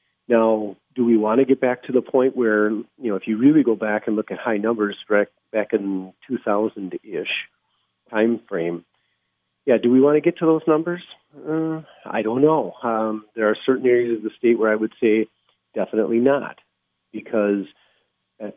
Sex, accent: male, American